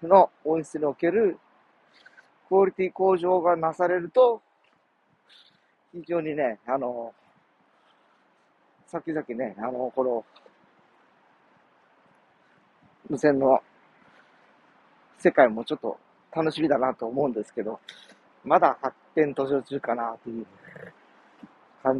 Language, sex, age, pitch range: Japanese, male, 40-59, 130-185 Hz